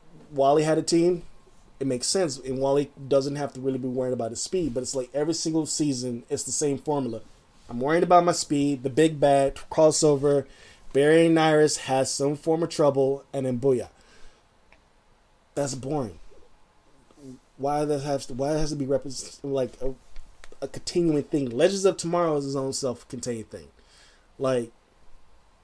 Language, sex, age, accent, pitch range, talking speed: English, male, 20-39, American, 130-170 Hz, 175 wpm